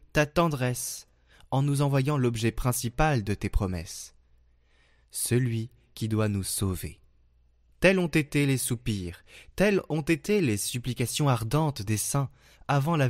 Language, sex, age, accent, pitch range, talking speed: French, male, 20-39, French, 100-135 Hz, 140 wpm